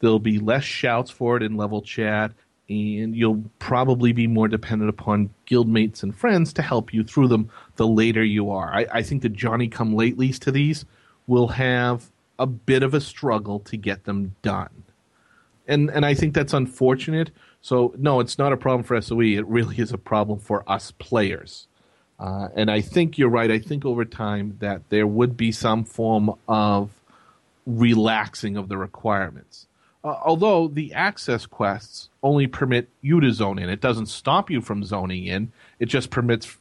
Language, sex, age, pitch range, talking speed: English, male, 40-59, 105-125 Hz, 180 wpm